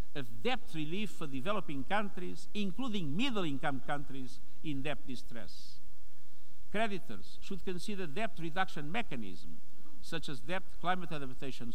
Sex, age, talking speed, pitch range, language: male, 50-69, 115 wpm, 150-210 Hz, English